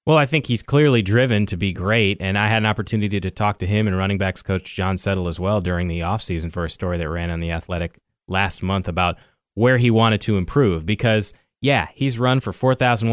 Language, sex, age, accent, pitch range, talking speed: English, male, 30-49, American, 100-125 Hz, 240 wpm